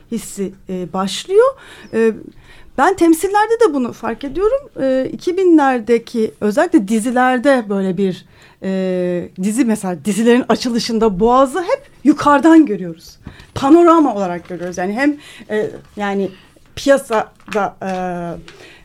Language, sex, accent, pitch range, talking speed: Turkish, female, native, 210-310 Hz, 90 wpm